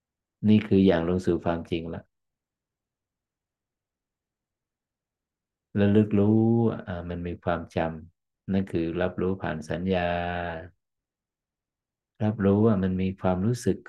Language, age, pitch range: Thai, 60-79, 85-105 Hz